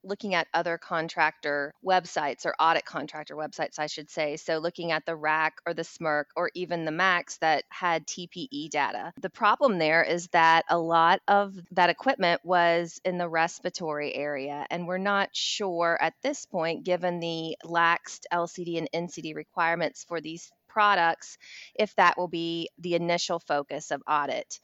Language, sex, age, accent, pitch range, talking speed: English, female, 20-39, American, 160-185 Hz, 170 wpm